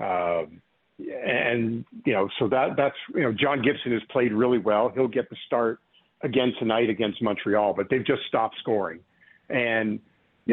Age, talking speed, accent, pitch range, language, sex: 50-69, 170 wpm, American, 110-130 Hz, English, male